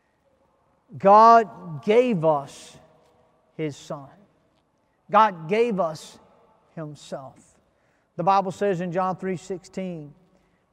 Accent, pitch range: American, 165-215 Hz